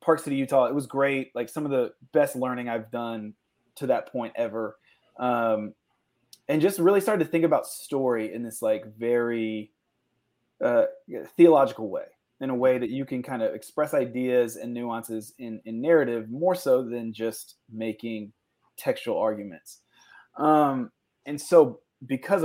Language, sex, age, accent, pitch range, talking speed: English, male, 20-39, American, 115-145 Hz, 160 wpm